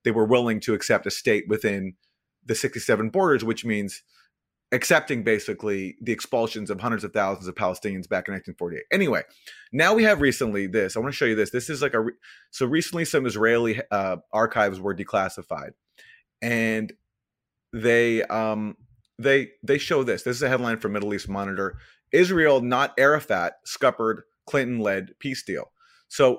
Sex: male